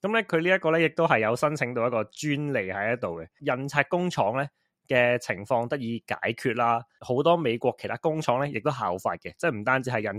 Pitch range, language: 115-155 Hz, Chinese